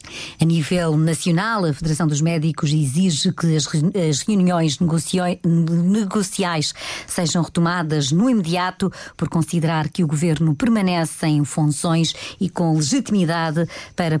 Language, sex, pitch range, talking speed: Portuguese, female, 155-190 Hz, 120 wpm